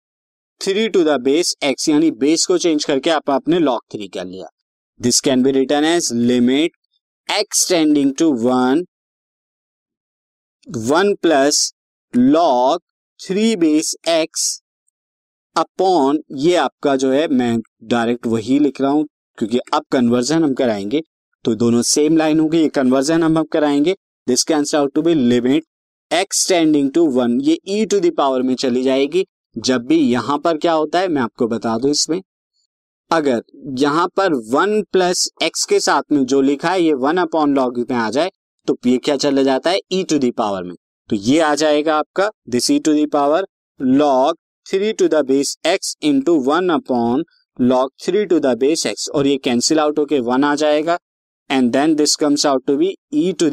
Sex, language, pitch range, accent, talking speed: male, Hindi, 130-185 Hz, native, 175 wpm